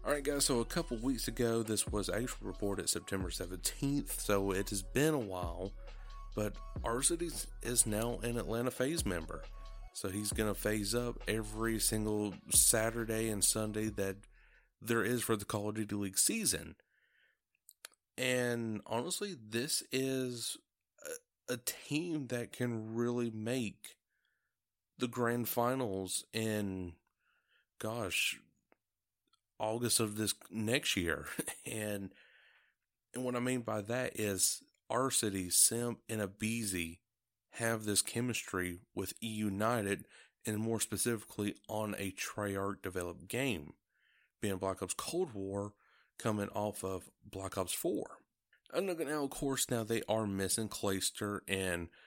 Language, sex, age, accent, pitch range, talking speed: English, male, 30-49, American, 95-120 Hz, 135 wpm